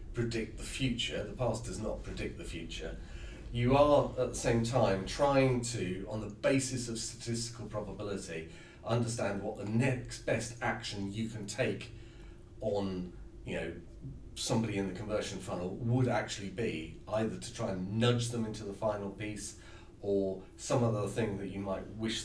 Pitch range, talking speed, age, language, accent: 95-115 Hz, 165 wpm, 40-59, English, British